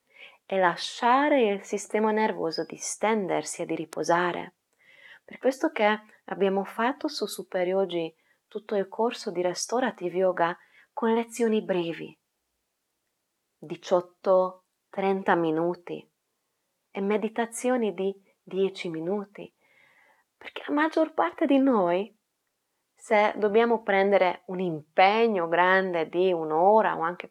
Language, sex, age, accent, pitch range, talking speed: Italian, female, 20-39, native, 175-230 Hz, 110 wpm